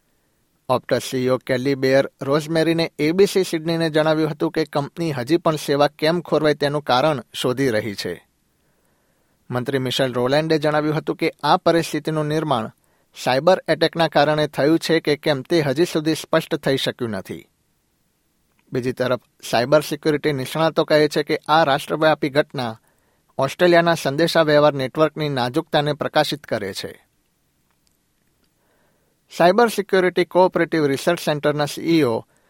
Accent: native